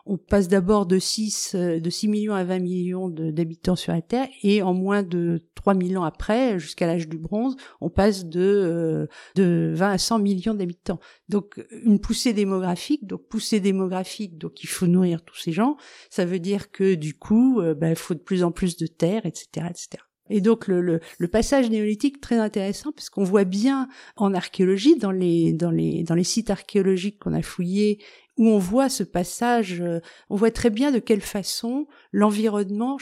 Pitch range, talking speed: 180-225 Hz, 195 wpm